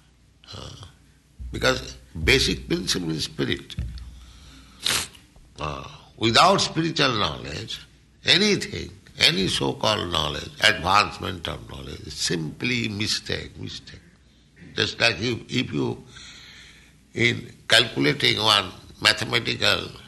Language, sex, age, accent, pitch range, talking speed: English, male, 60-79, Indian, 85-135 Hz, 85 wpm